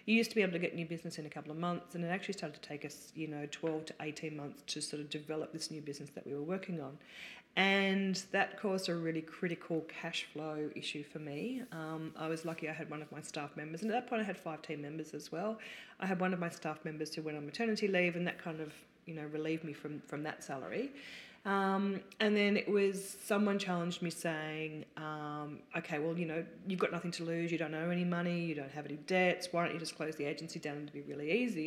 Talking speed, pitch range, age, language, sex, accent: 260 wpm, 155-190 Hz, 40-59, English, female, Australian